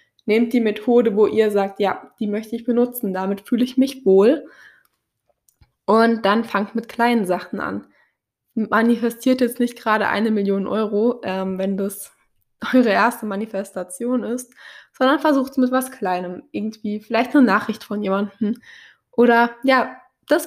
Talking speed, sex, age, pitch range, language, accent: 150 wpm, female, 20-39, 210-250 Hz, German, German